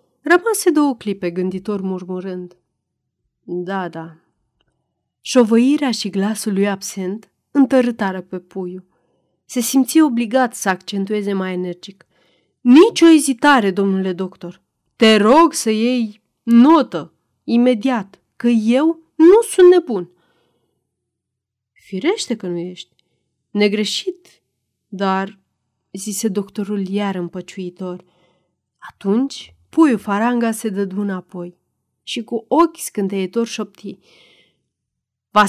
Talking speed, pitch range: 100 wpm, 185-245 Hz